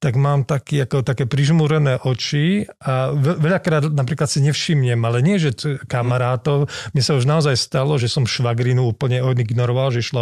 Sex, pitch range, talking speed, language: male, 125-150 Hz, 170 wpm, Slovak